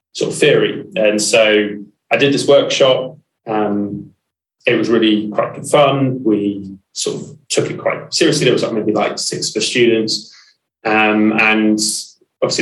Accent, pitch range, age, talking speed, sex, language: British, 105-115 Hz, 20-39, 155 wpm, male, English